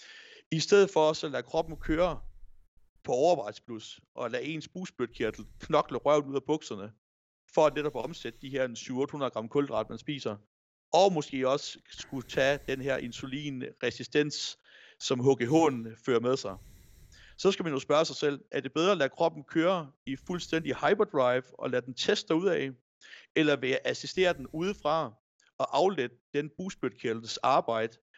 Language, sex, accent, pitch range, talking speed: Danish, male, native, 115-155 Hz, 160 wpm